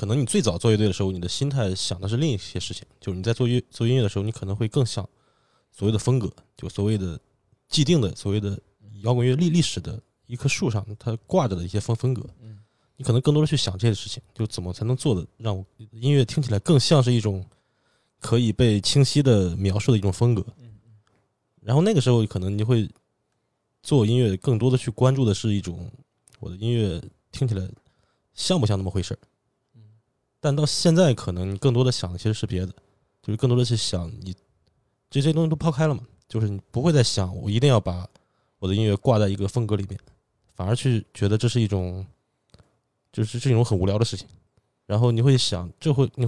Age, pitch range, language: 20-39, 100-130 Hz, Chinese